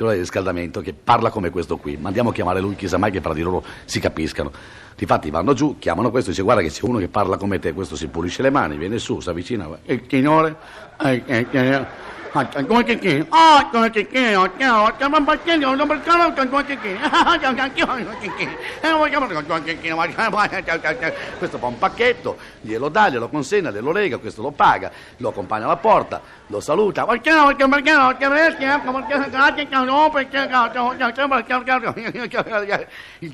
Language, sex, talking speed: Italian, male, 120 wpm